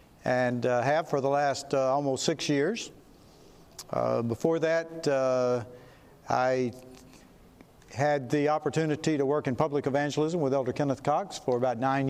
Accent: American